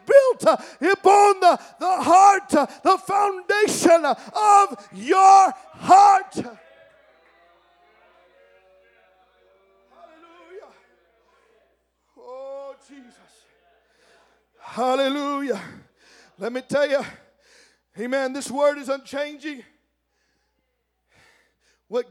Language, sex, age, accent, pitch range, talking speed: English, male, 50-69, American, 230-335 Hz, 65 wpm